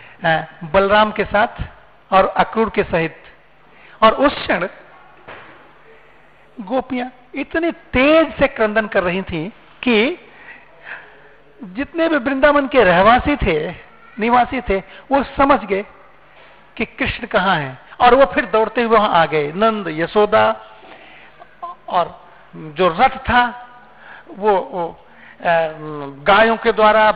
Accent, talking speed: Indian, 115 wpm